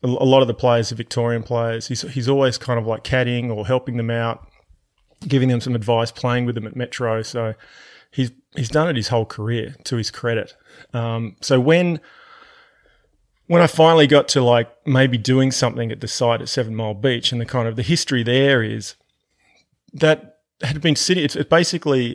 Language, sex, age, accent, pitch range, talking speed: English, male, 30-49, Australian, 115-135 Hz, 195 wpm